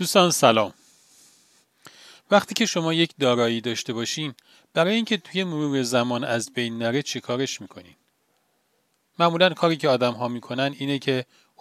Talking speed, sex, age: 140 wpm, male, 40-59